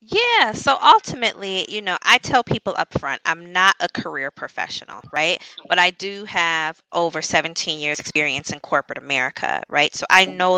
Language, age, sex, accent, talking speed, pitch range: English, 20-39, female, American, 175 wpm, 150-180 Hz